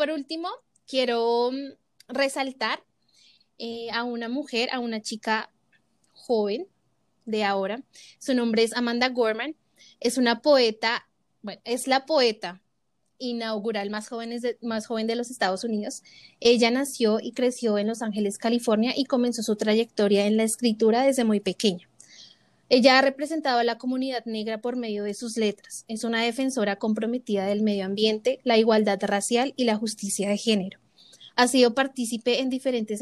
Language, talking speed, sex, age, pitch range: Spanish, 155 wpm, female, 20-39, 215-255 Hz